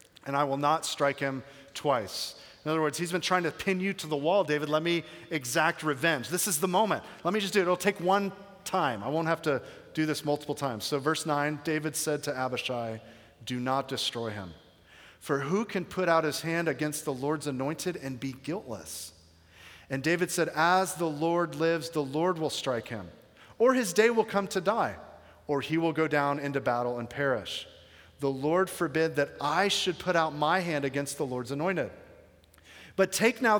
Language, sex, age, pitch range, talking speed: English, male, 40-59, 140-180 Hz, 205 wpm